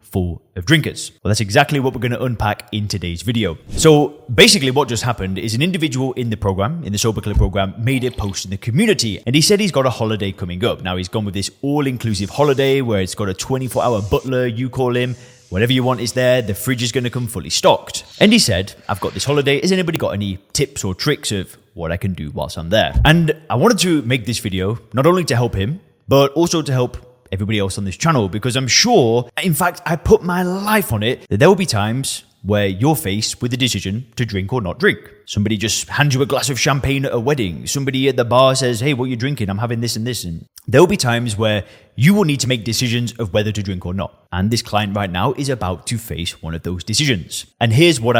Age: 20-39